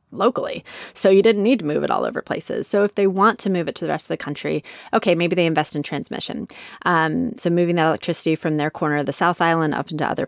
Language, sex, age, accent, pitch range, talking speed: English, female, 30-49, American, 155-200 Hz, 265 wpm